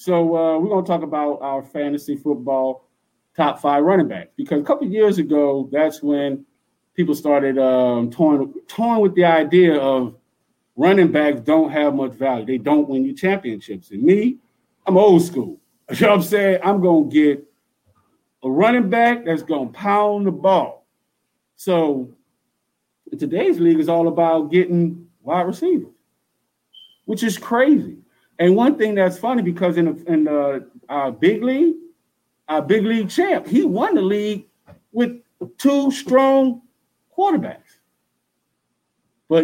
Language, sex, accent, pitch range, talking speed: English, male, American, 145-210 Hz, 155 wpm